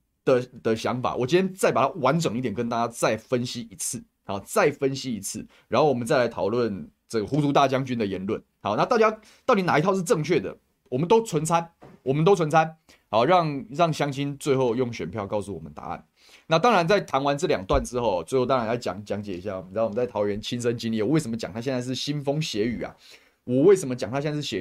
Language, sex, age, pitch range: Chinese, male, 20-39, 110-150 Hz